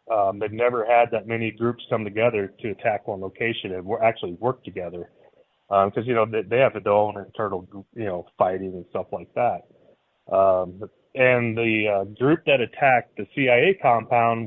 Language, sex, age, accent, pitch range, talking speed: English, male, 30-49, American, 105-130 Hz, 185 wpm